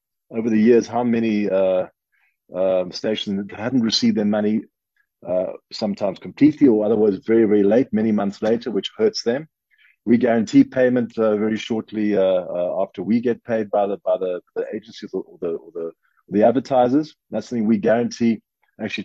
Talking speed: 180 wpm